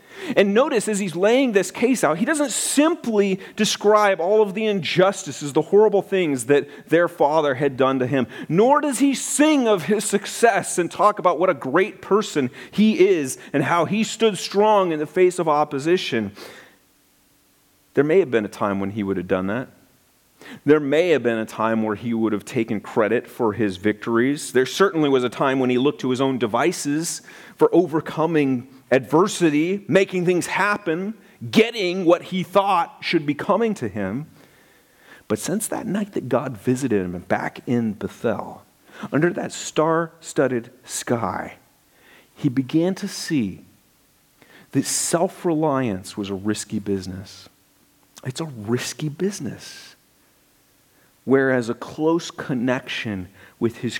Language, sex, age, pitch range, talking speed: English, male, 40-59, 120-195 Hz, 155 wpm